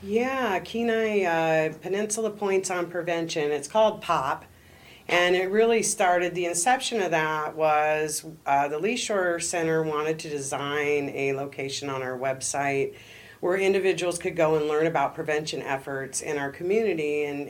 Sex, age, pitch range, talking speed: female, 40-59, 145-175 Hz, 150 wpm